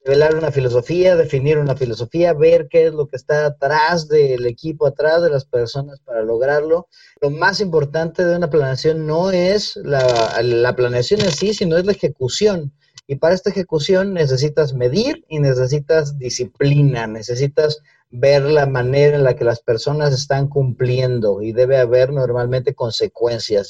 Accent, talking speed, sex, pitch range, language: Mexican, 160 wpm, male, 130-170 Hz, Spanish